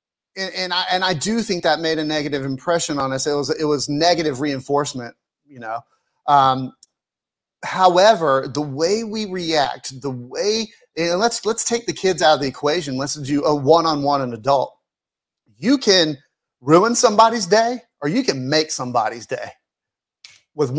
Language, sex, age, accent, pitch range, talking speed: English, male, 30-49, American, 140-190 Hz, 175 wpm